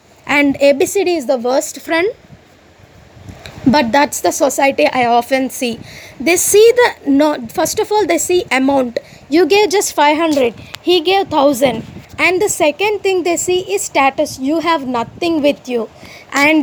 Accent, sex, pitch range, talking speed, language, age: Indian, female, 275-375 Hz, 155 wpm, English, 20-39